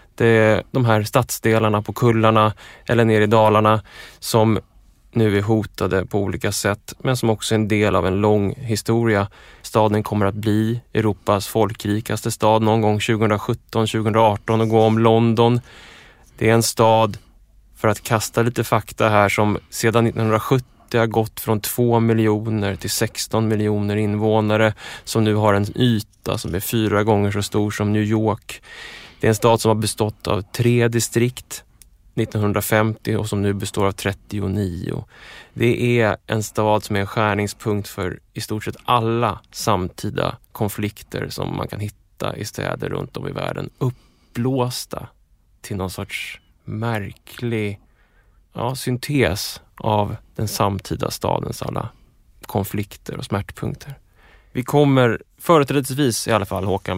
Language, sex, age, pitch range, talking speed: English, male, 20-39, 105-115 Hz, 150 wpm